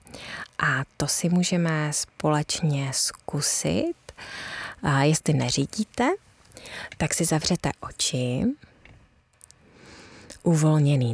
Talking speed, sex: 75 wpm, female